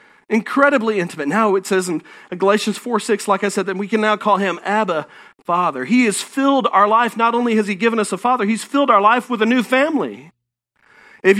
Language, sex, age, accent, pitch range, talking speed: English, male, 40-59, American, 195-255 Hz, 220 wpm